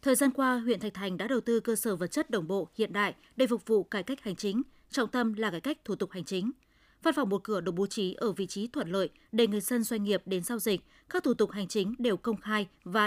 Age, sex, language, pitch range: 20-39, female, Vietnamese, 200-250 Hz